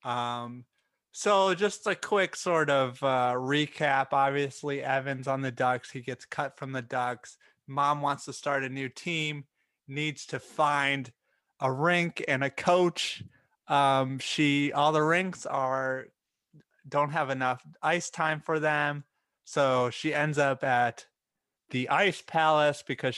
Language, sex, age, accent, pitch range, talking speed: English, male, 30-49, American, 120-150 Hz, 150 wpm